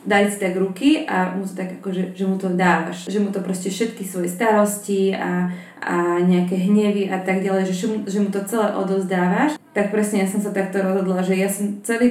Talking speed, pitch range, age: 220 wpm, 190-215 Hz, 20-39